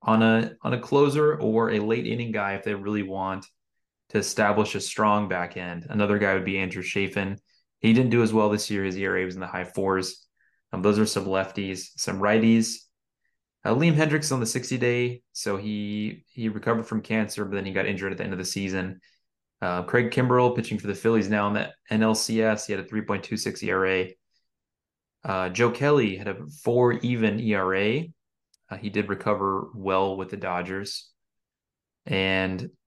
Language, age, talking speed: English, 20-39, 185 wpm